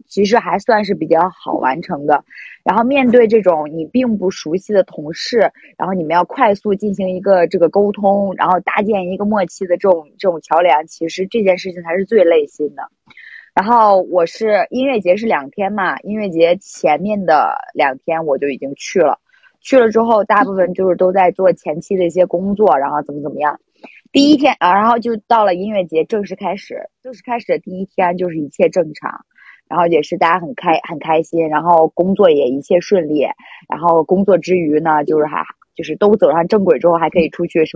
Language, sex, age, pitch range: Chinese, female, 20-39, 165-220 Hz